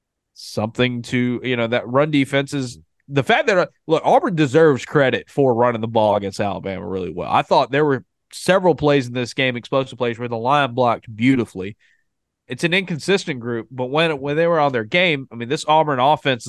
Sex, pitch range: male, 110-140 Hz